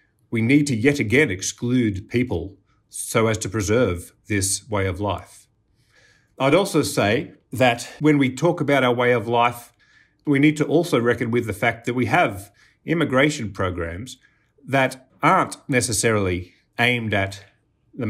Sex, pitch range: male, 95-125 Hz